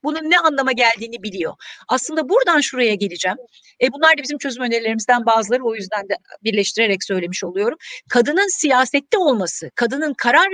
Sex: female